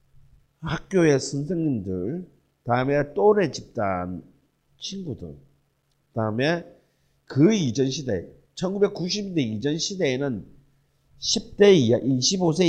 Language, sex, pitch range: Korean, male, 105-160 Hz